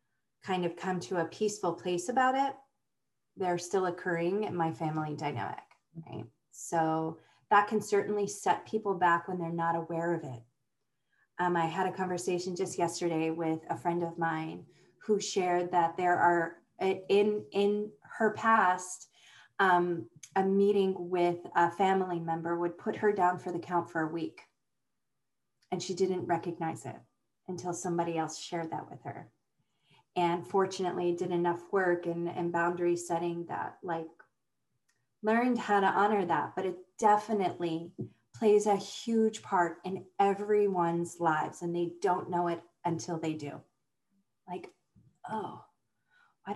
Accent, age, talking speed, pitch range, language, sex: American, 30-49, 150 wpm, 170-200 Hz, English, female